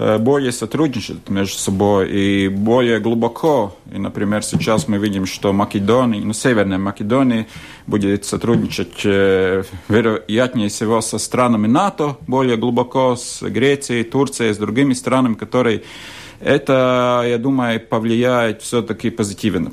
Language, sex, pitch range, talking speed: Russian, male, 105-130 Hz, 120 wpm